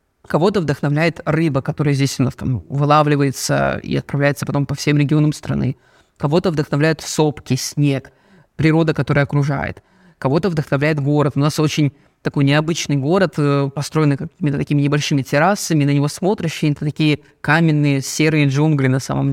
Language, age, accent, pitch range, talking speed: Russian, 20-39, native, 140-165 Hz, 145 wpm